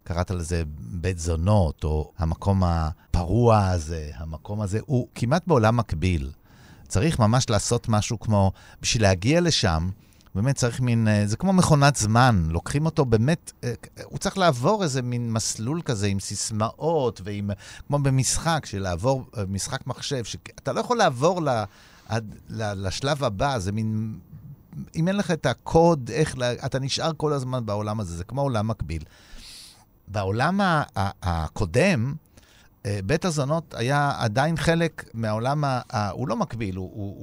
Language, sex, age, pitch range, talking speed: Hebrew, male, 50-69, 100-145 Hz, 140 wpm